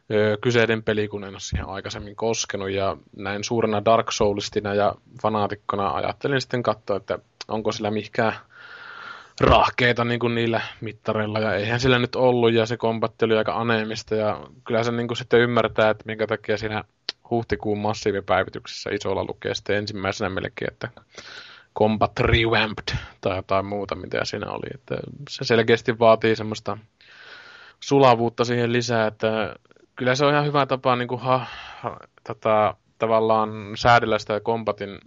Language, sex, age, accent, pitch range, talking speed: Finnish, male, 20-39, native, 105-120 Hz, 145 wpm